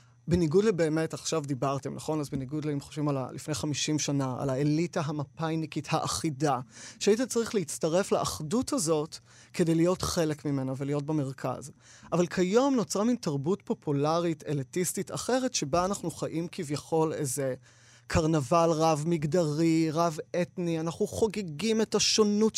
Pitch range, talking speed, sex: 145-185 Hz, 130 wpm, male